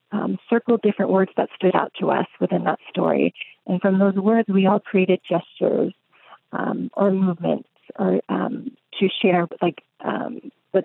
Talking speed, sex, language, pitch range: 165 wpm, female, English, 180-210 Hz